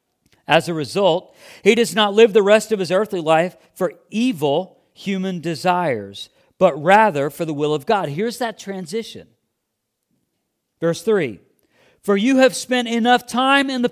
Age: 40-59